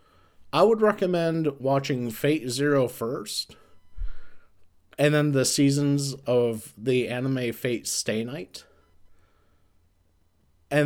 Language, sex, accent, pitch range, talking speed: English, male, American, 90-140 Hz, 100 wpm